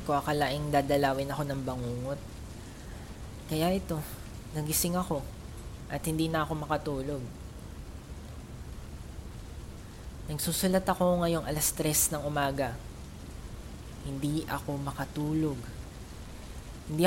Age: 20-39